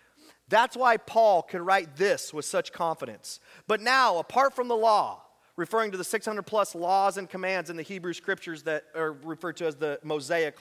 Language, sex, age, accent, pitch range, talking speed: English, male, 30-49, American, 170-225 Hz, 190 wpm